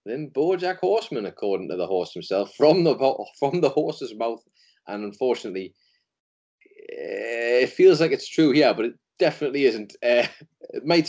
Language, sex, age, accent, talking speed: English, male, 30-49, British, 170 wpm